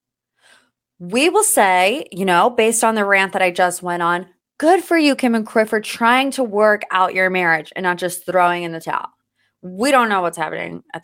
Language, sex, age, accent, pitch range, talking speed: English, female, 20-39, American, 180-260 Hz, 210 wpm